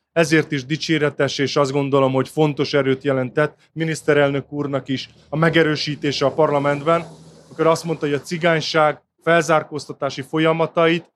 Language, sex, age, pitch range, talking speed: Hungarian, male, 30-49, 140-170 Hz, 135 wpm